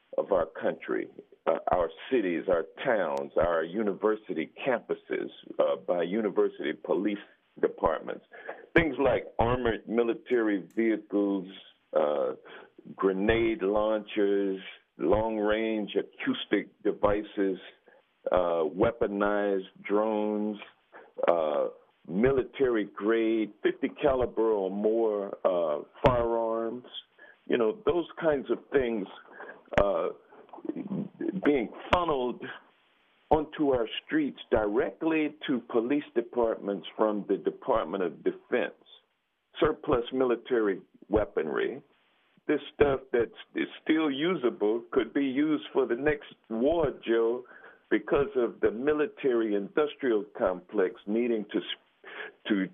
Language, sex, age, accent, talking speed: English, male, 50-69, American, 95 wpm